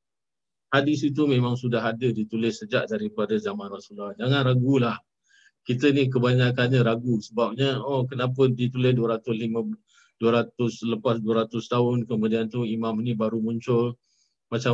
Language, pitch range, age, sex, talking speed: Malay, 110-130 Hz, 50-69, male, 130 wpm